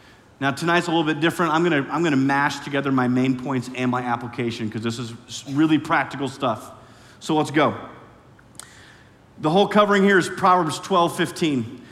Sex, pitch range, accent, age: male, 120-175 Hz, American, 30-49